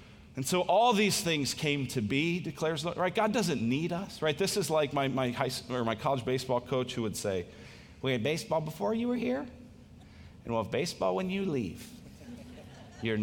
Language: English